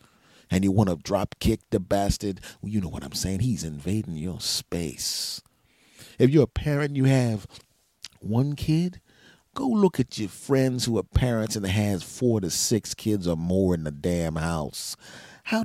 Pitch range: 95-120 Hz